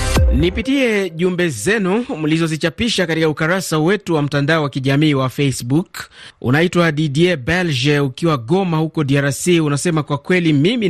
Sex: male